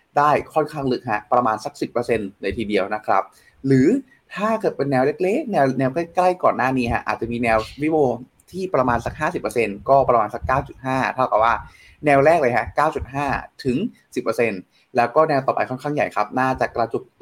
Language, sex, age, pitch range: Thai, male, 20-39, 115-150 Hz